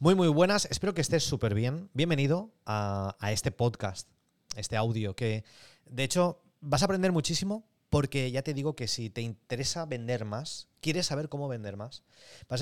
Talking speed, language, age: 185 wpm, Spanish, 20-39